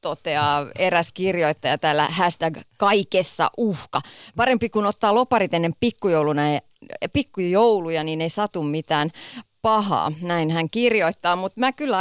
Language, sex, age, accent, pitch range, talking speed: Finnish, female, 30-49, native, 155-210 Hz, 120 wpm